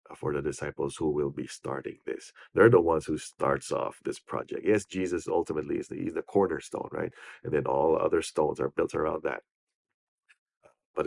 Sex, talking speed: male, 185 wpm